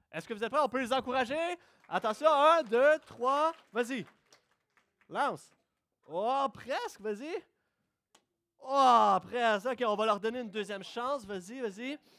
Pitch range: 175-270 Hz